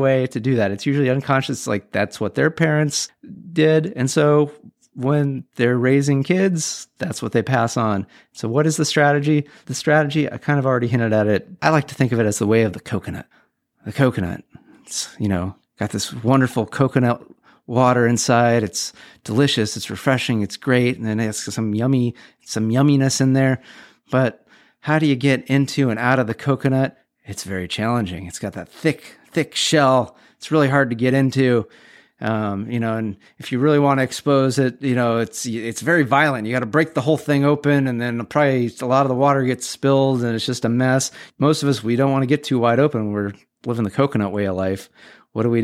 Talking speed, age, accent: 215 wpm, 30-49, American